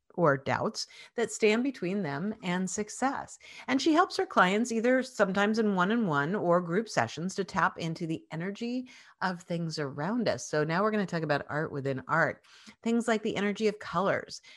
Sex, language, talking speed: female, English, 185 wpm